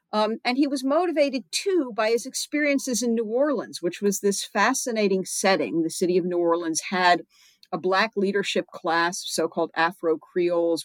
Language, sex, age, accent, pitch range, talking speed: English, female, 50-69, American, 160-215 Hz, 160 wpm